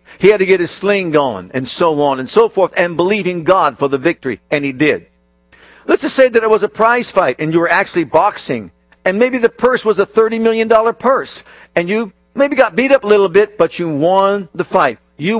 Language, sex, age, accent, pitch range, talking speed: English, male, 50-69, American, 130-190 Hz, 240 wpm